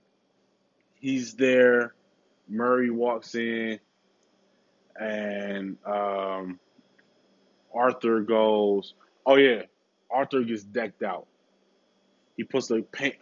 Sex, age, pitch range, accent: male, 20-39, 105-130 Hz, American